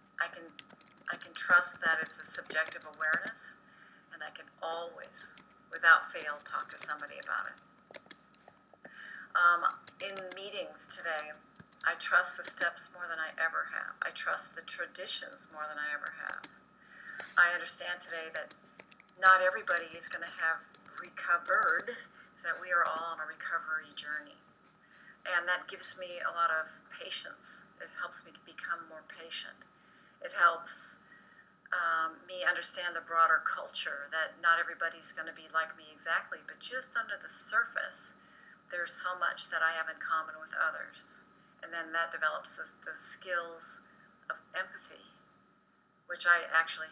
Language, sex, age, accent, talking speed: English, female, 40-59, American, 155 wpm